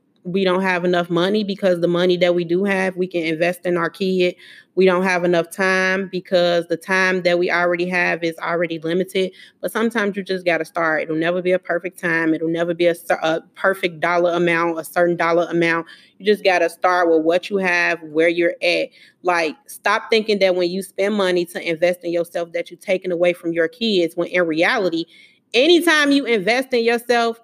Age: 20-39